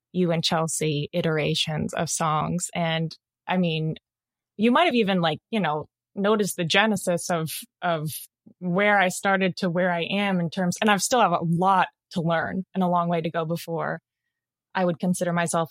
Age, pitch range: 20-39, 170-220 Hz